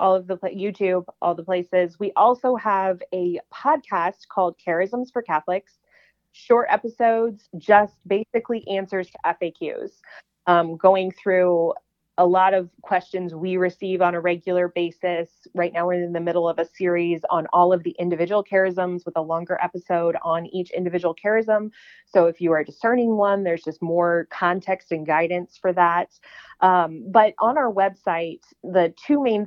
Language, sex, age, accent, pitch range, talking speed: English, female, 30-49, American, 175-205 Hz, 165 wpm